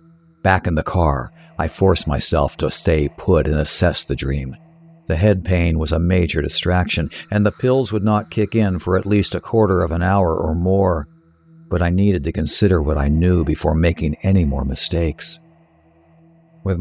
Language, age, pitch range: English, 50-69, 80-105 Hz